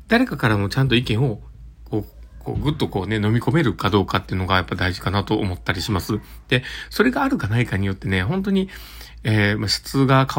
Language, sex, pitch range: Japanese, male, 100-130 Hz